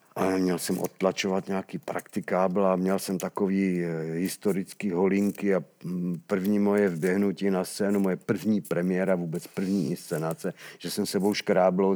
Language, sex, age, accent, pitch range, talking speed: Czech, male, 50-69, native, 90-125 Hz, 140 wpm